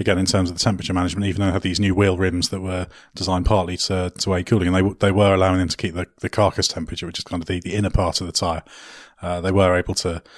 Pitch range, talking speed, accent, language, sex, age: 90-105 Hz, 295 wpm, British, English, male, 30-49